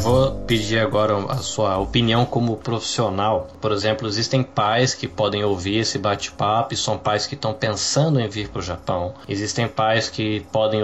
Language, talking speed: Portuguese, 175 wpm